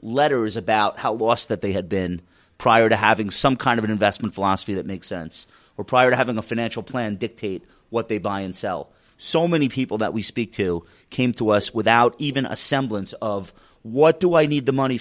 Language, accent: English, American